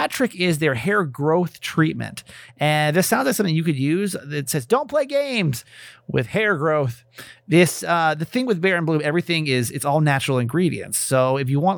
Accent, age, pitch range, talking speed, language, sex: American, 30-49, 140-180 Hz, 200 wpm, English, male